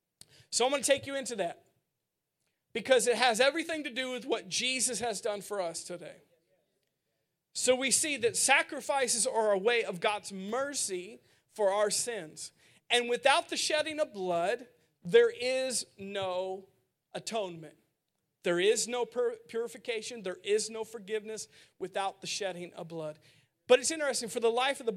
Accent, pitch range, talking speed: American, 190-250 Hz, 160 wpm